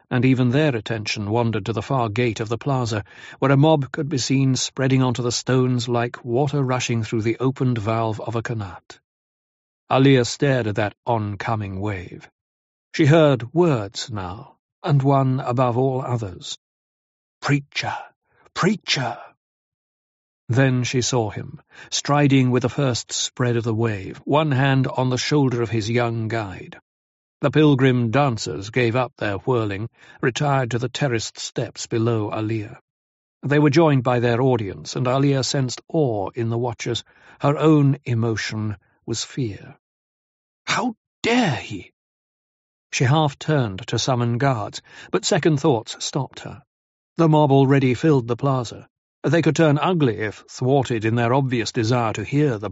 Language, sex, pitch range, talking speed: English, male, 115-140 Hz, 155 wpm